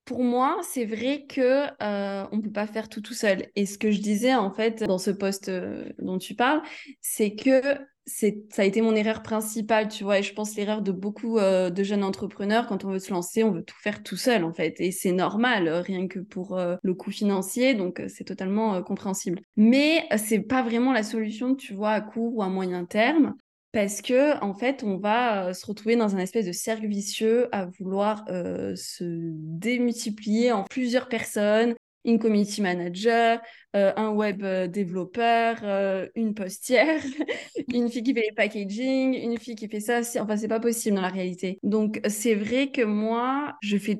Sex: female